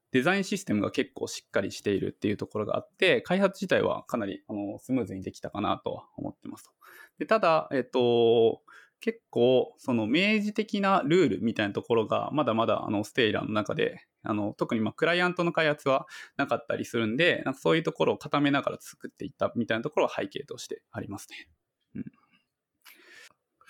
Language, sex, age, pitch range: Japanese, male, 20-39, 115-190 Hz